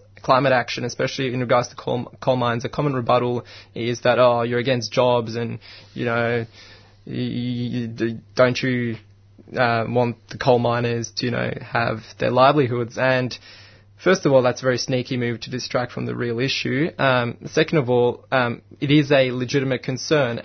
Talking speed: 170 wpm